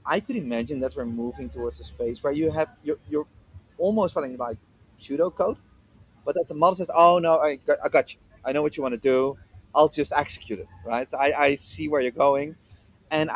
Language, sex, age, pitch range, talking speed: English, male, 30-49, 115-155 Hz, 225 wpm